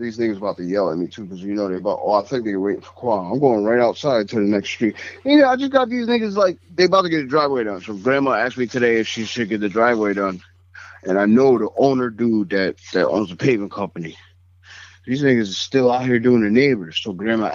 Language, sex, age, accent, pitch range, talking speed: English, male, 30-49, American, 95-125 Hz, 270 wpm